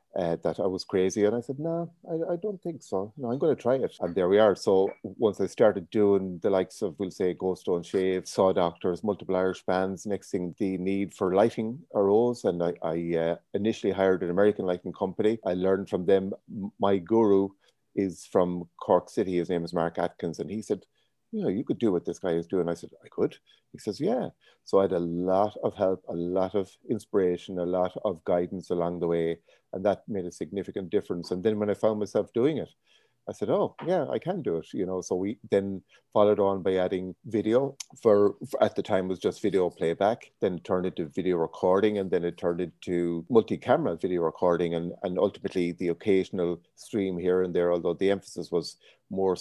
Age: 30-49